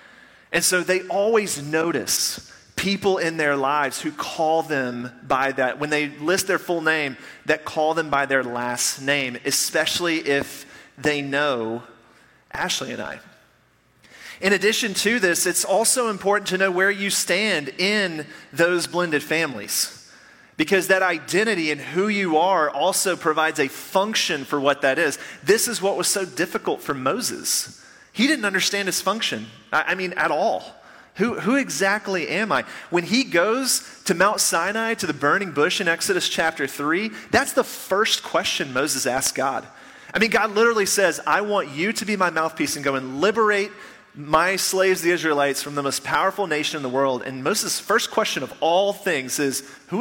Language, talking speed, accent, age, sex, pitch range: English, 175 wpm, American, 30-49, male, 145-200 Hz